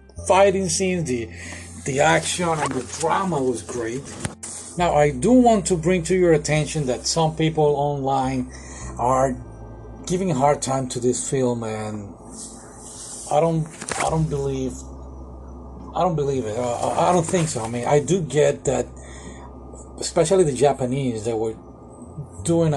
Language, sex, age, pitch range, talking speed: English, male, 40-59, 105-150 Hz, 155 wpm